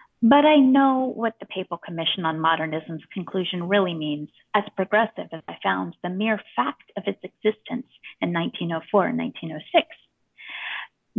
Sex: female